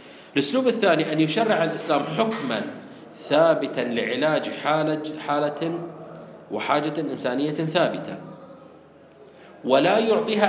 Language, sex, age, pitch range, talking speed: Arabic, male, 40-59, 155-200 Hz, 80 wpm